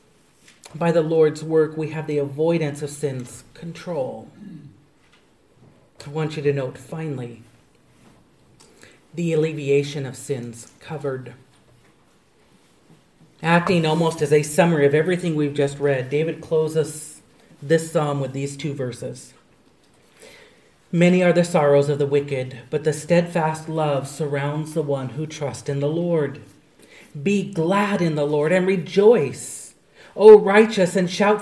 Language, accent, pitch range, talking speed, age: English, American, 145-175 Hz, 135 wpm, 40-59